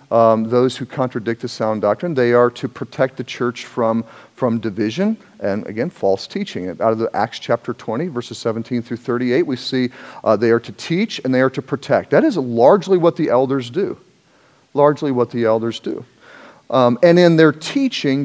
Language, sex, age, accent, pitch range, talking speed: English, male, 40-59, American, 115-170 Hz, 195 wpm